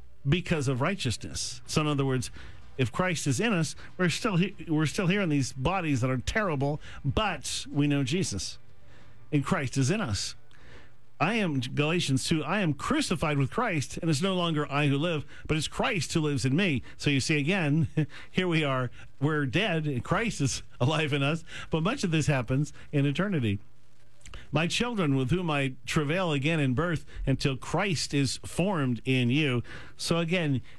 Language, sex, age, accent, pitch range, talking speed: English, male, 50-69, American, 125-165 Hz, 180 wpm